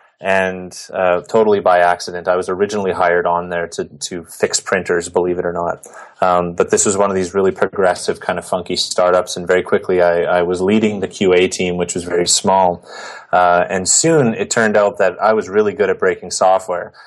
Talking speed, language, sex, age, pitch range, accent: 210 wpm, English, male, 20-39, 90-110 Hz, American